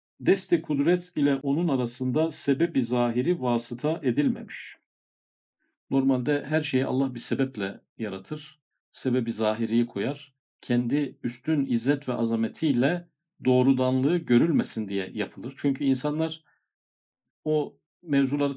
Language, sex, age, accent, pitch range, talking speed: Turkish, male, 50-69, native, 125-155 Hz, 105 wpm